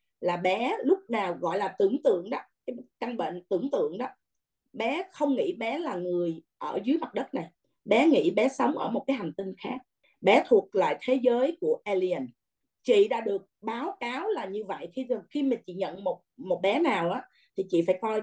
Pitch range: 195-285 Hz